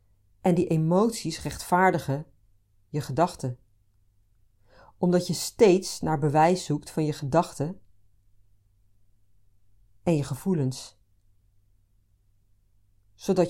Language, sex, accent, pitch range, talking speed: Dutch, female, Dutch, 100-165 Hz, 85 wpm